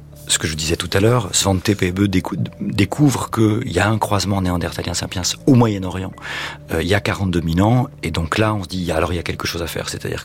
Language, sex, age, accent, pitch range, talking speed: French, male, 40-59, French, 85-105 Hz, 235 wpm